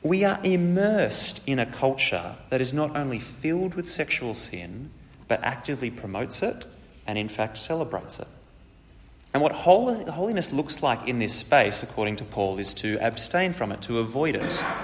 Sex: male